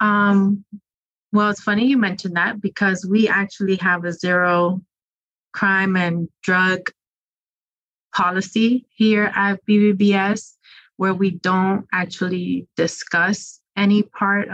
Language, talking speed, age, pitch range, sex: English, 110 wpm, 30-49, 180-205 Hz, female